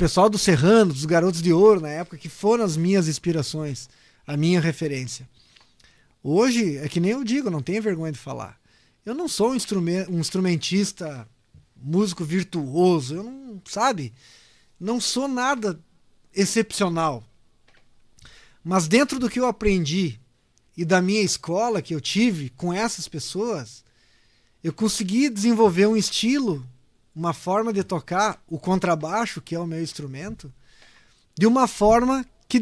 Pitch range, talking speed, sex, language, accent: 155-210 Hz, 140 wpm, male, Portuguese, Brazilian